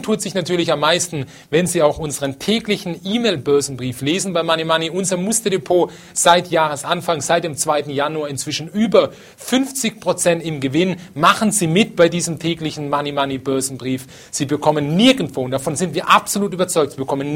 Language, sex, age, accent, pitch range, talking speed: German, male, 40-59, German, 135-180 Hz, 165 wpm